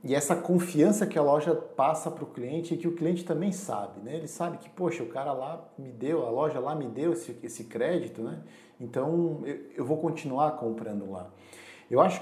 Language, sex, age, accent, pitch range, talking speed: Portuguese, male, 40-59, Brazilian, 120-170 Hz, 215 wpm